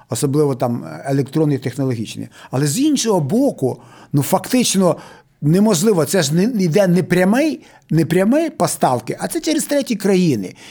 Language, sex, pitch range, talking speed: Ukrainian, male, 155-200 Hz, 135 wpm